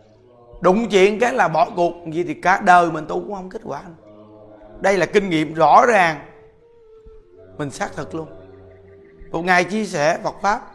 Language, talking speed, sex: Vietnamese, 175 wpm, male